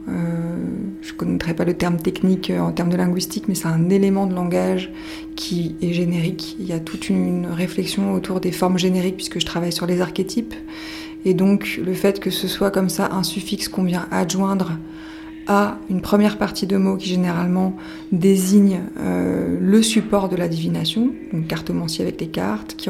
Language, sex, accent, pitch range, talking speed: French, female, French, 165-190 Hz, 190 wpm